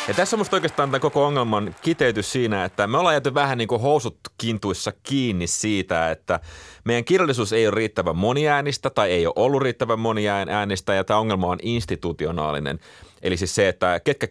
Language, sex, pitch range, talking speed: Finnish, male, 95-130 Hz, 170 wpm